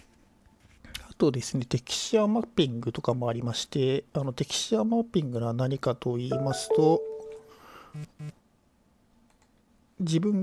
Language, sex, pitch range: Japanese, male, 130-175 Hz